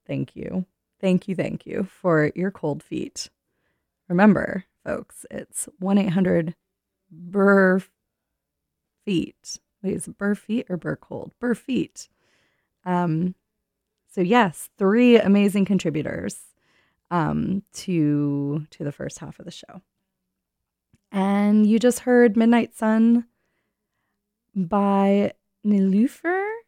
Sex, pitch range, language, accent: female, 175-220 Hz, English, American